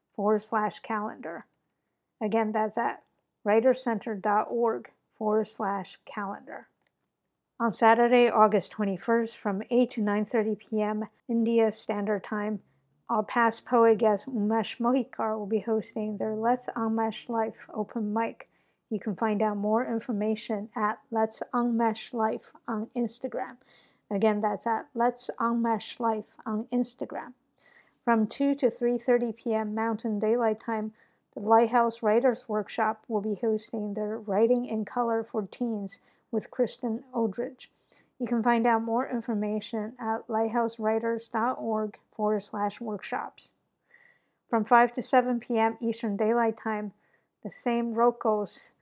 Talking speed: 130 wpm